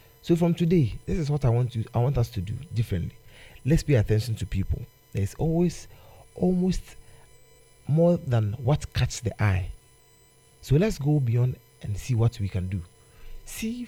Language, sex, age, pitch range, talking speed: English, male, 40-59, 110-140 Hz, 175 wpm